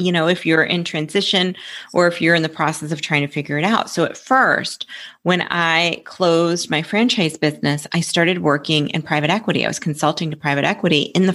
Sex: female